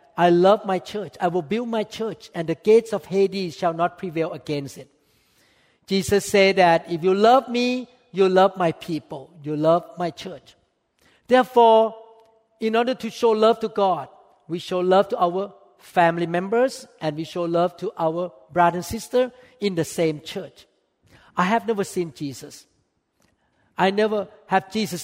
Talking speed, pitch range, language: 170 wpm, 165-220 Hz, English